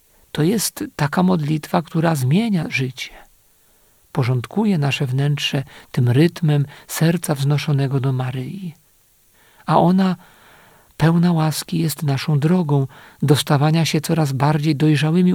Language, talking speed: Polish, 115 wpm